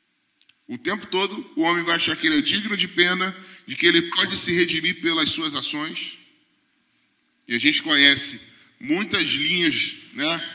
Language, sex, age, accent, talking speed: Portuguese, male, 10-29, Brazilian, 165 wpm